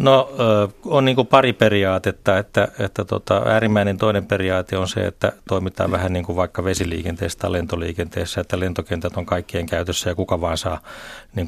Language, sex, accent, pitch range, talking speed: Finnish, male, native, 90-105 Hz, 175 wpm